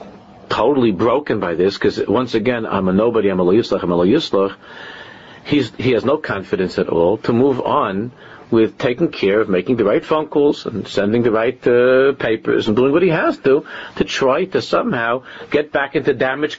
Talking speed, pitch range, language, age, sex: 195 wpm, 100-145 Hz, English, 50-69, male